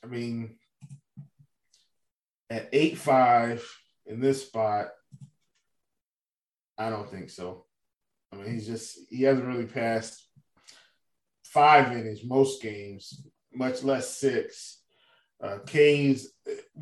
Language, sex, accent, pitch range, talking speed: English, male, American, 115-160 Hz, 110 wpm